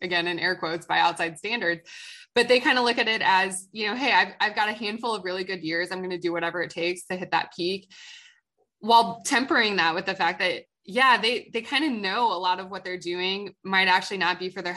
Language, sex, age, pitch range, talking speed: English, female, 20-39, 180-235 Hz, 255 wpm